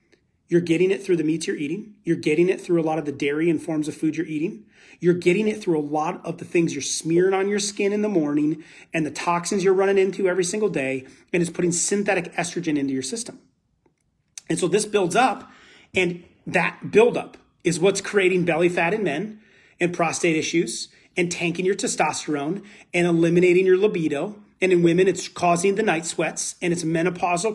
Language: English